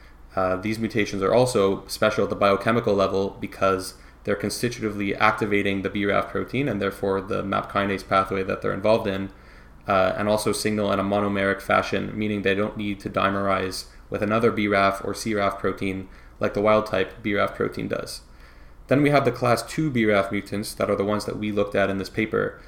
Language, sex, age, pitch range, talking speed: English, male, 20-39, 95-110 Hz, 195 wpm